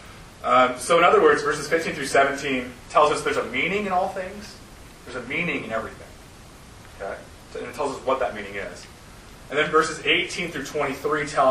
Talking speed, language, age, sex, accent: 205 wpm, English, 30-49, male, American